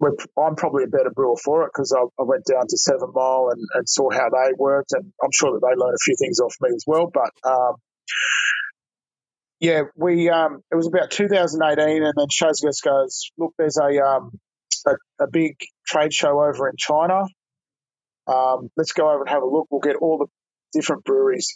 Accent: Australian